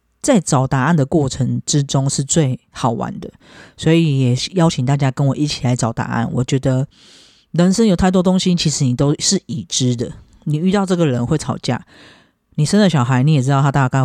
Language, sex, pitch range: Chinese, female, 130-160 Hz